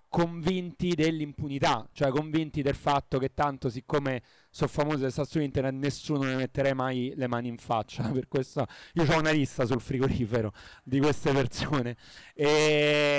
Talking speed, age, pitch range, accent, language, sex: 155 wpm, 30-49, 130-160 Hz, native, Italian, male